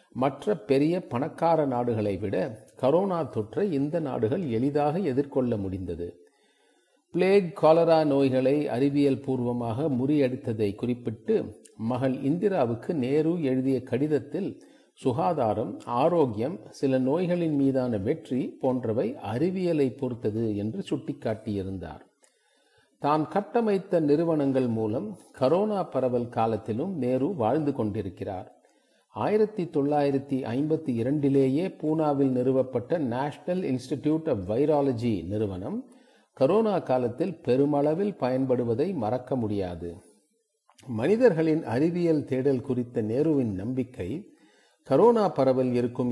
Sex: male